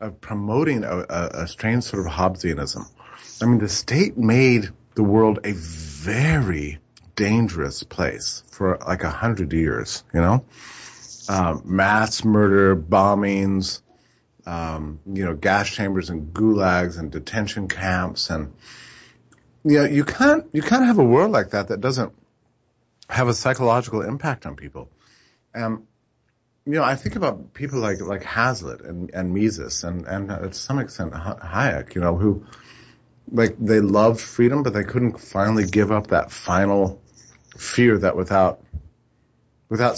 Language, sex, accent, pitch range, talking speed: English, male, American, 90-120 Hz, 150 wpm